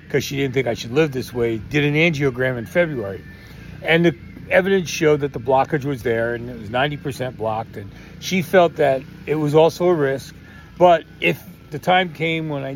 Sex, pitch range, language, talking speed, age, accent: male, 125-160 Hz, English, 205 wpm, 40-59, American